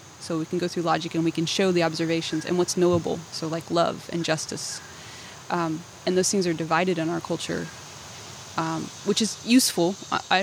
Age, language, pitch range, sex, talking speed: 20-39, English, 160-185 Hz, female, 195 wpm